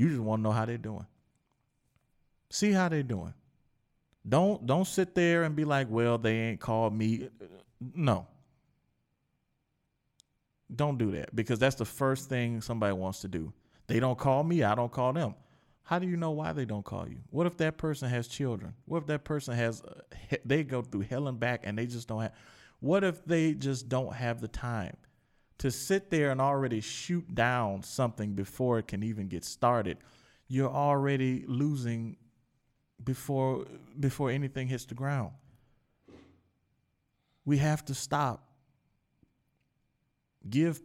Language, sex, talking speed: English, male, 165 wpm